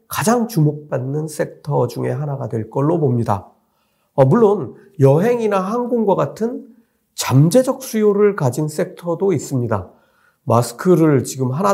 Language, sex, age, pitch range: Korean, male, 40-59, 130-205 Hz